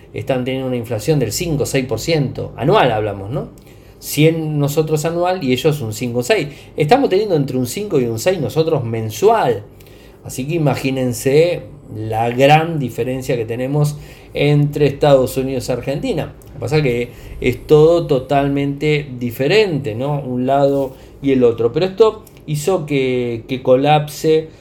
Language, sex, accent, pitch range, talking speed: Spanish, male, Argentinian, 125-160 Hz, 150 wpm